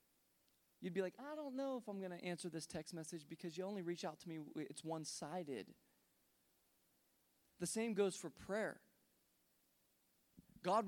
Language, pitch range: English, 165-220 Hz